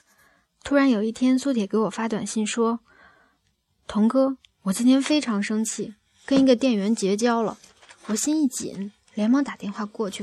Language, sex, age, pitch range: Chinese, female, 20-39, 195-230 Hz